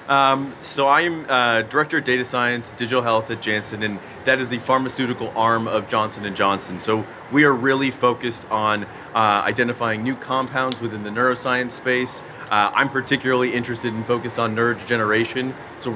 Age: 30-49